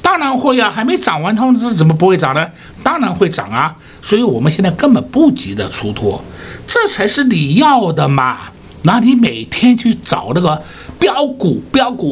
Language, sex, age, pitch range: Chinese, male, 60-79, 155-250 Hz